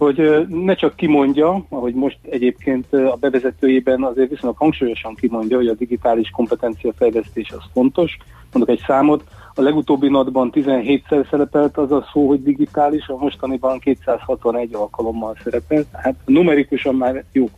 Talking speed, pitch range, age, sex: 145 wpm, 125-145 Hz, 40-59, male